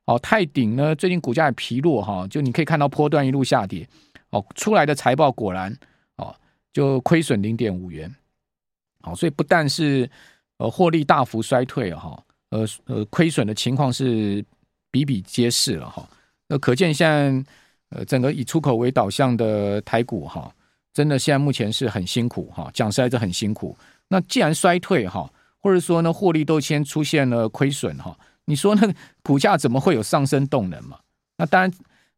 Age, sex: 50-69, male